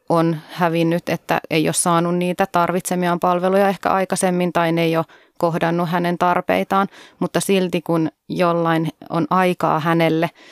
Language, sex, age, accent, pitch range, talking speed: Finnish, female, 30-49, native, 165-185 Hz, 145 wpm